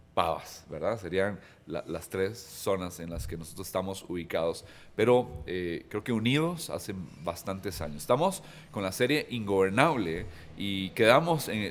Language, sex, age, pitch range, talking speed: Spanish, male, 40-59, 90-115 Hz, 145 wpm